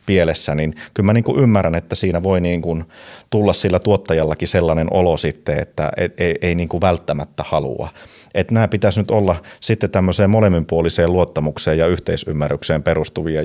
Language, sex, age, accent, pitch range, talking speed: Finnish, male, 30-49, native, 80-105 Hz, 150 wpm